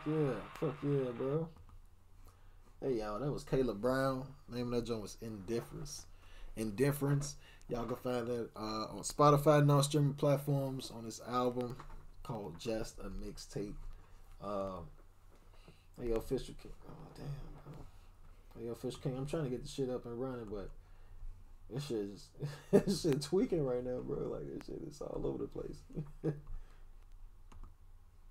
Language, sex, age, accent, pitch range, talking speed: English, male, 20-39, American, 90-125 Hz, 160 wpm